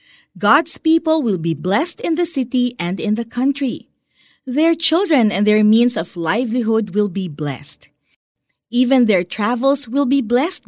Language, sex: Filipino, female